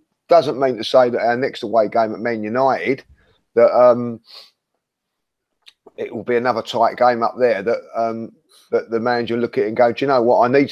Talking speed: 215 wpm